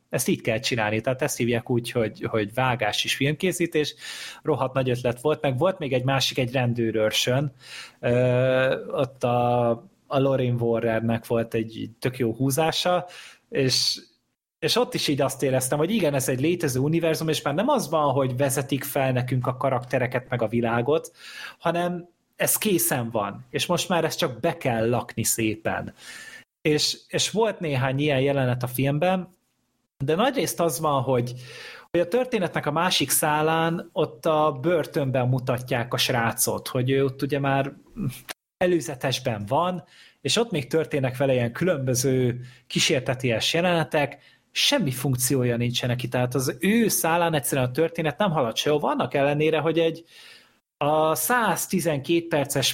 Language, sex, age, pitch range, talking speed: Hungarian, male, 30-49, 125-165 Hz, 155 wpm